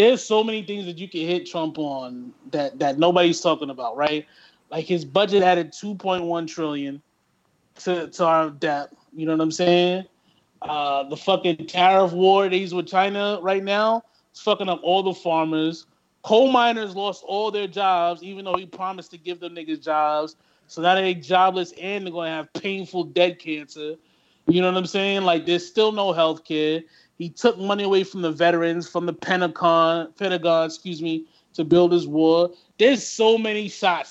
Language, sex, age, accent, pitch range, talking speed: English, male, 20-39, American, 160-195 Hz, 190 wpm